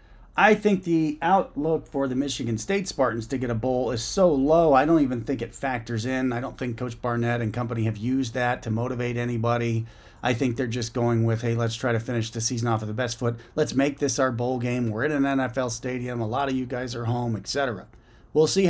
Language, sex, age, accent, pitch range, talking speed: English, male, 40-59, American, 120-140 Hz, 245 wpm